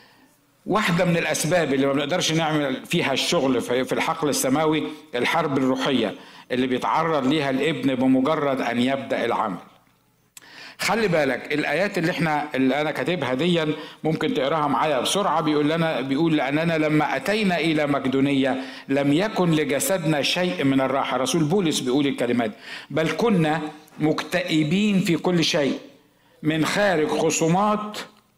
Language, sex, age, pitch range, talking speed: Arabic, male, 60-79, 150-205 Hz, 130 wpm